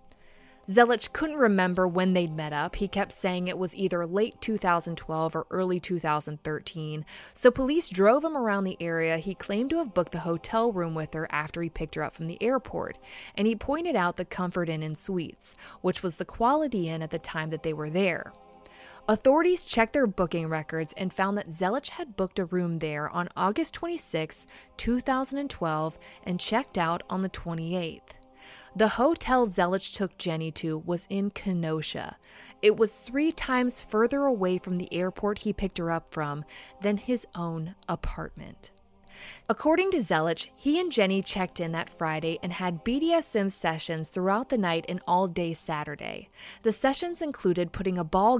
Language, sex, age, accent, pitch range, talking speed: English, female, 20-39, American, 165-225 Hz, 175 wpm